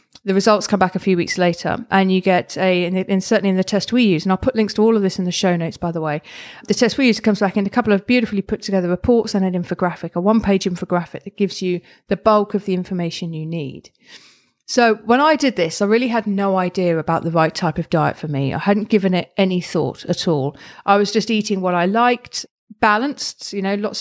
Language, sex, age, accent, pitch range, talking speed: English, female, 40-59, British, 175-205 Hz, 255 wpm